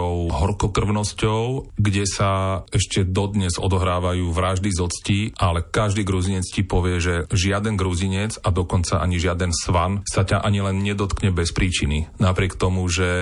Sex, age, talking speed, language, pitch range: male, 30-49, 140 wpm, Slovak, 90-100 Hz